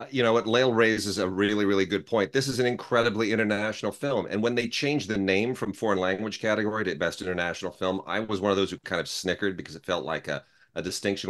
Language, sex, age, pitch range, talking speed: English, male, 40-59, 95-115 Hz, 245 wpm